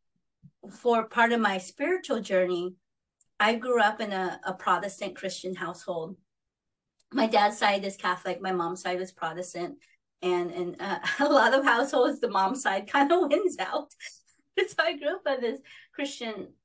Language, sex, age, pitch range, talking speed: English, female, 30-49, 185-240 Hz, 170 wpm